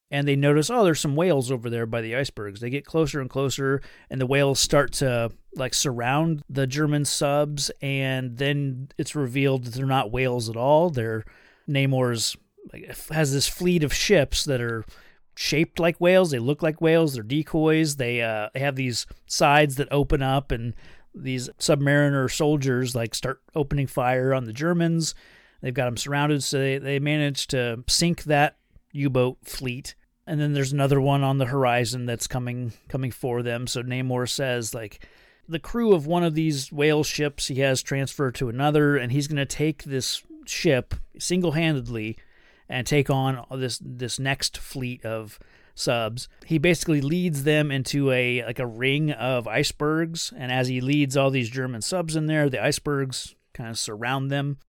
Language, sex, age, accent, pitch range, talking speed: English, male, 30-49, American, 125-150 Hz, 175 wpm